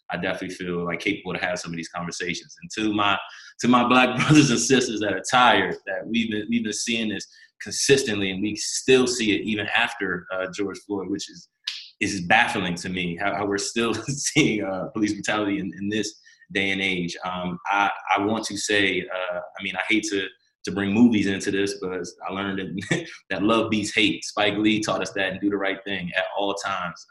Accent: American